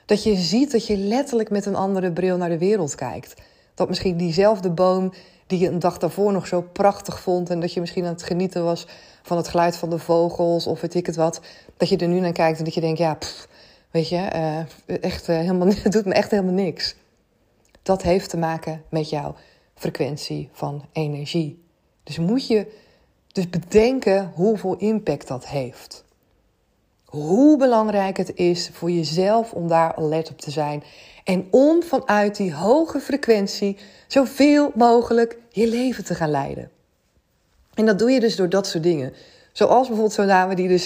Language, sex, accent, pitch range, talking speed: Dutch, female, Dutch, 170-210 Hz, 180 wpm